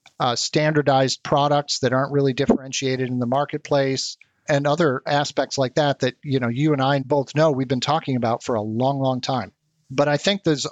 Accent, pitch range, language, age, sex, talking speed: American, 130-150 Hz, English, 40-59, male, 200 wpm